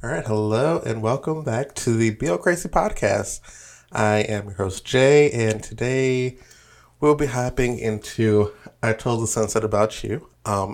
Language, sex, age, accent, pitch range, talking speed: English, male, 20-39, American, 105-130 Hz, 160 wpm